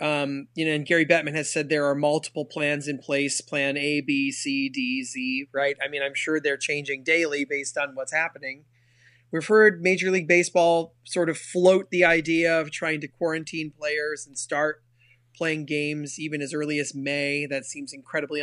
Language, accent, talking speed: English, American, 190 wpm